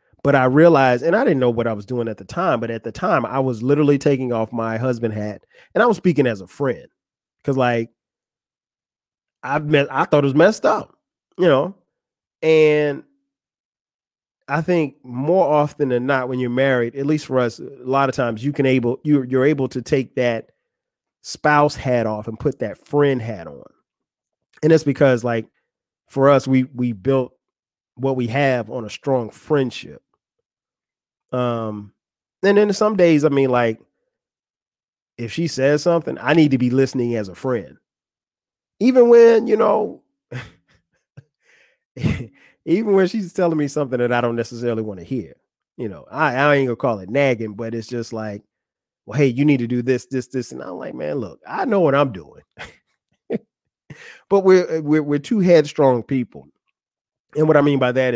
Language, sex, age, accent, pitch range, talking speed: English, male, 30-49, American, 120-150 Hz, 185 wpm